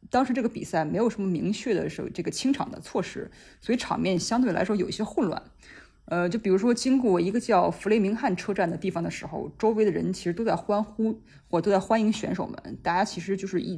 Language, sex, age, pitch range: Chinese, female, 20-39, 180-220 Hz